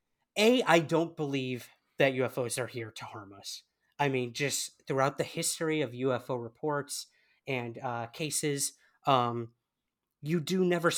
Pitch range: 120-150 Hz